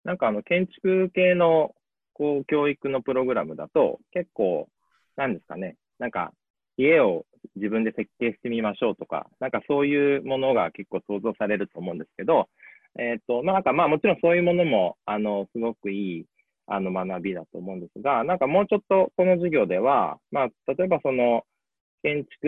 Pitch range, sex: 105-160 Hz, male